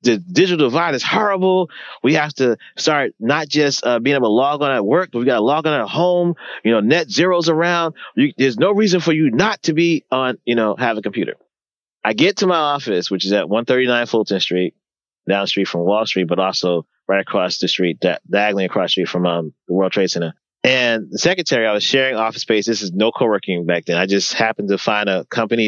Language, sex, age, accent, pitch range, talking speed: English, male, 30-49, American, 100-145 Hz, 240 wpm